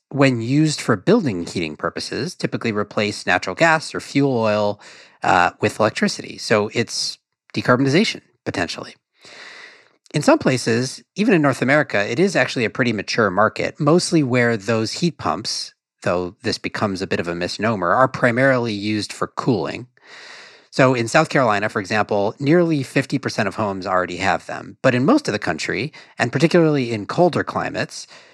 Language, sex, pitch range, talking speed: English, male, 105-155 Hz, 160 wpm